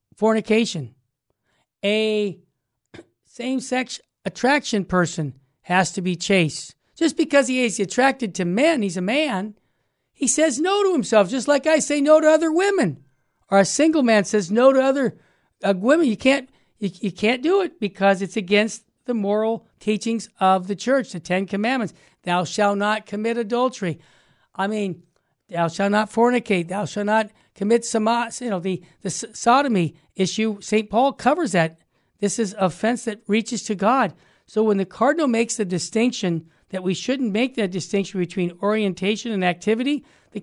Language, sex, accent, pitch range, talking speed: English, male, American, 185-235 Hz, 165 wpm